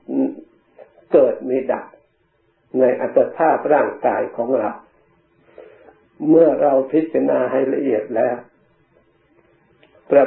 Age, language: 60-79, Thai